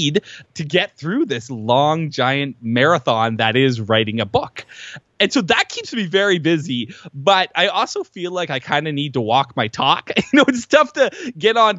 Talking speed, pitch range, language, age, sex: 200 wpm, 130-185 Hz, English, 20-39, male